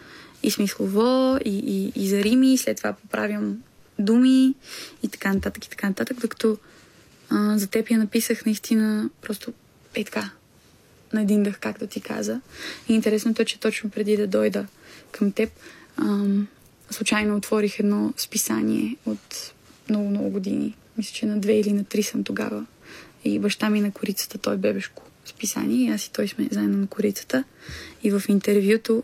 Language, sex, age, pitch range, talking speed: Bulgarian, female, 20-39, 200-225 Hz, 165 wpm